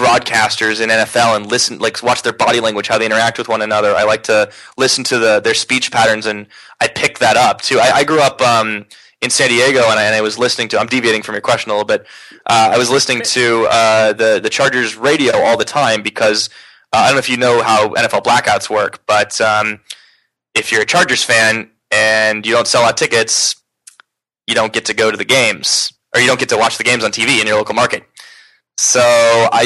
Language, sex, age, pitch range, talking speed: English, male, 20-39, 110-130 Hz, 235 wpm